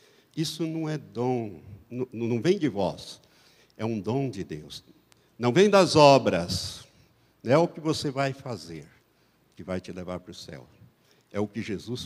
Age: 60-79